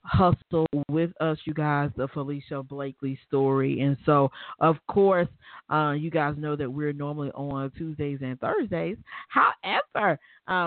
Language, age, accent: English, 40-59, American